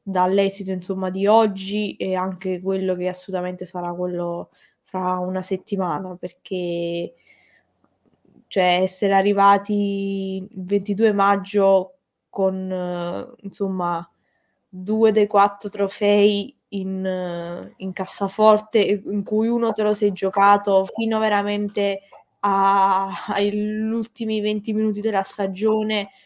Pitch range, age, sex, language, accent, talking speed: 185-210 Hz, 20-39, female, Italian, native, 110 wpm